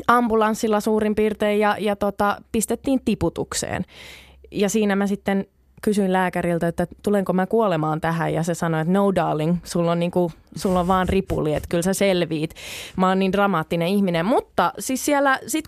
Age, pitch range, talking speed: 20-39, 175-225 Hz, 170 wpm